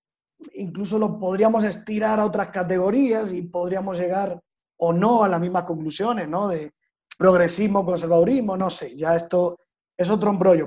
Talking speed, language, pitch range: 150 wpm, Spanish, 180-235 Hz